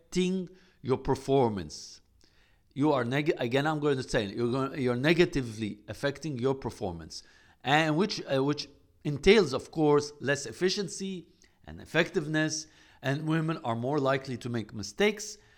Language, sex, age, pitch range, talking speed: English, male, 50-69, 115-160 Hz, 135 wpm